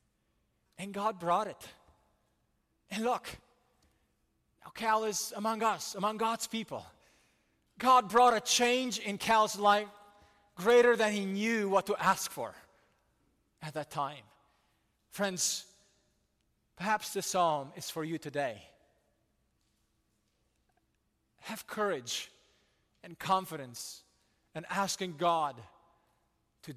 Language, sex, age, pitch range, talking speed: English, male, 30-49, 150-205 Hz, 110 wpm